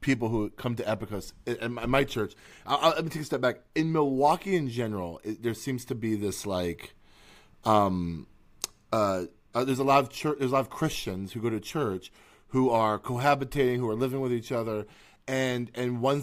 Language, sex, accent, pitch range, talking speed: English, male, American, 110-145 Hz, 195 wpm